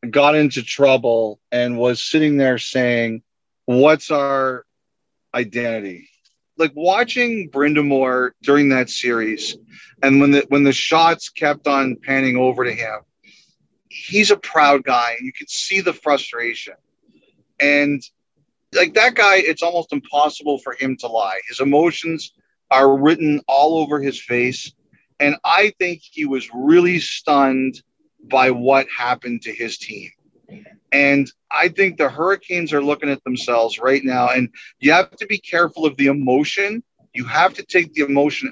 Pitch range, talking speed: 130-160 Hz, 150 wpm